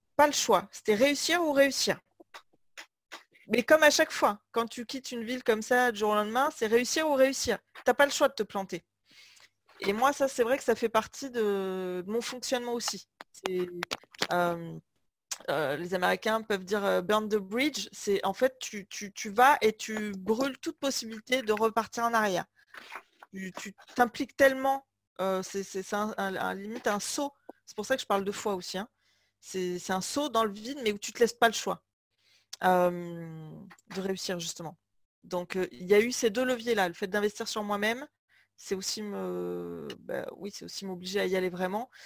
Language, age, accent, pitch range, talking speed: French, 30-49, French, 185-240 Hz, 200 wpm